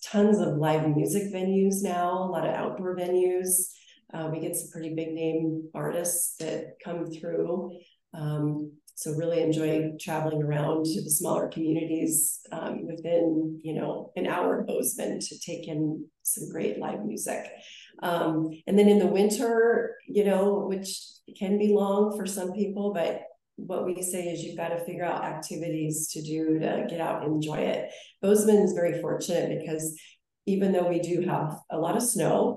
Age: 30-49